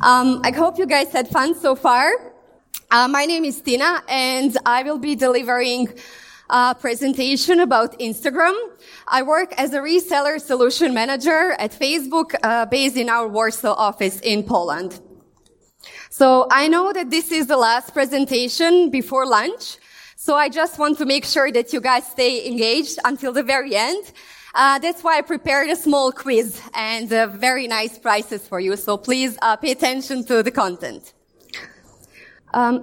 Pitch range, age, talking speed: 230-295 Hz, 20-39, 165 wpm